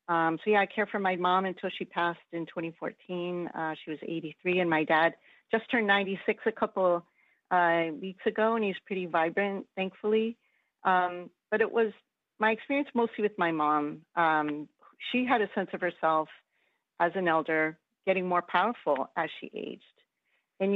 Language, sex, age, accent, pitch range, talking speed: English, female, 40-59, American, 160-200 Hz, 175 wpm